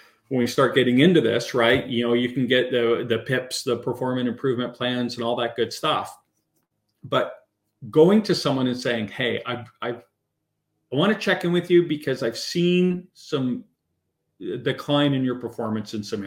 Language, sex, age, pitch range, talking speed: English, male, 40-59, 120-145 Hz, 185 wpm